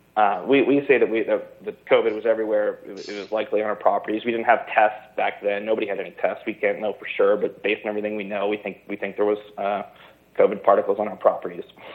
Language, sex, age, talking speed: English, male, 30-49, 260 wpm